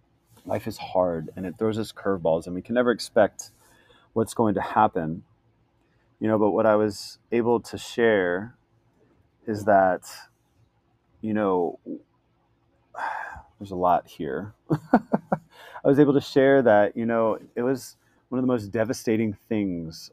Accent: American